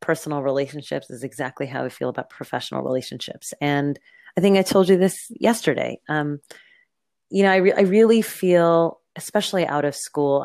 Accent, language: American, English